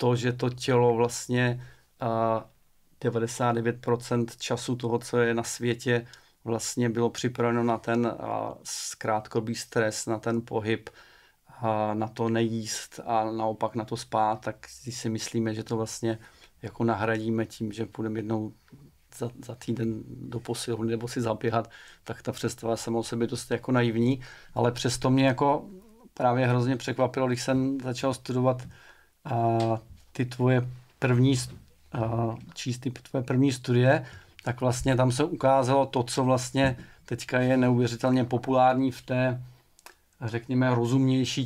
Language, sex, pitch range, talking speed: Czech, male, 115-125 Hz, 140 wpm